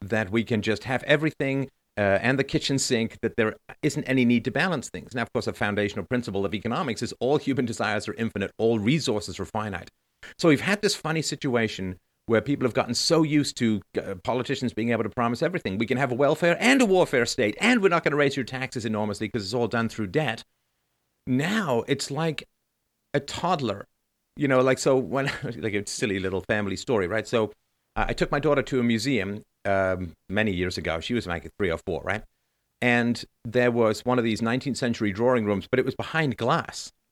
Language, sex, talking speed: English, male, 215 wpm